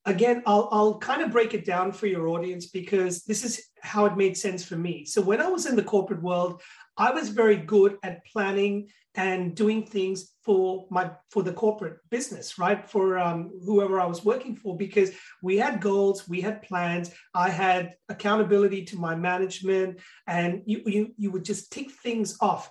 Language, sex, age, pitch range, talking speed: English, male, 30-49, 185-225 Hz, 195 wpm